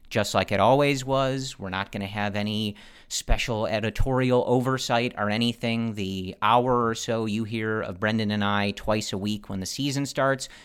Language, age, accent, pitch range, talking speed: English, 40-59, American, 100-120 Hz, 185 wpm